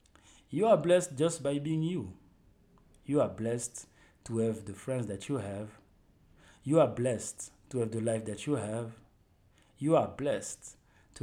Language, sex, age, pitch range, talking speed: English, male, 40-59, 100-140 Hz, 165 wpm